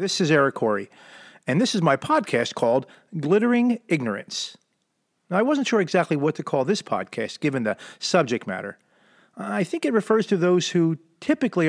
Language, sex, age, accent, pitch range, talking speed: English, male, 40-59, American, 155-220 Hz, 175 wpm